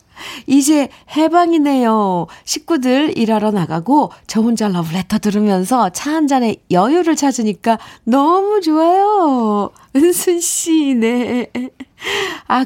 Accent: native